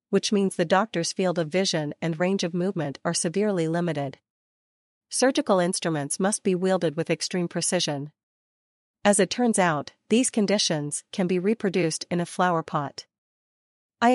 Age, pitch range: 40-59, 160-200 Hz